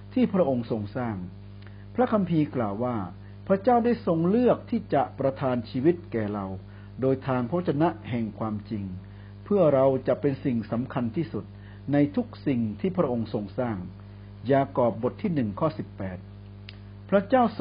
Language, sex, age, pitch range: Thai, male, 60-79, 100-160 Hz